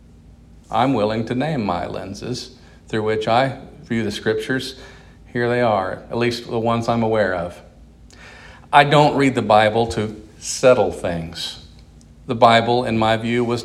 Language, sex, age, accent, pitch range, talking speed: English, male, 50-69, American, 110-140 Hz, 160 wpm